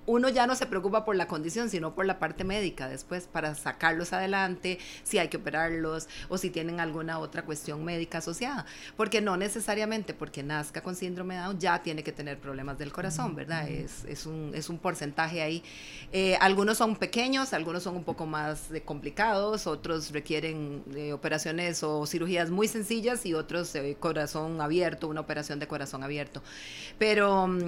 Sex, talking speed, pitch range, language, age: female, 180 wpm, 155-205 Hz, Spanish, 30-49